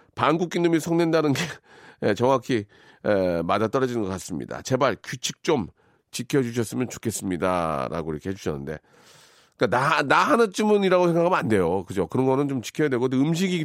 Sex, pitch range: male, 120-170 Hz